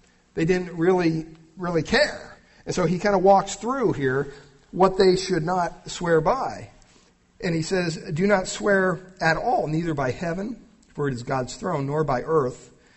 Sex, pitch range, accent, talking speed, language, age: male, 125-175 Hz, American, 175 wpm, English, 50-69